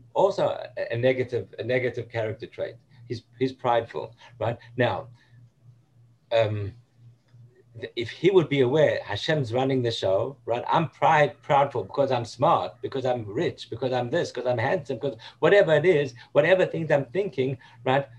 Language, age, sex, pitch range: English, 50-69, male, 120-150 Hz